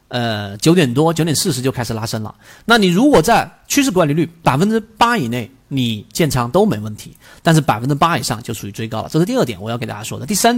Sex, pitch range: male, 125-175 Hz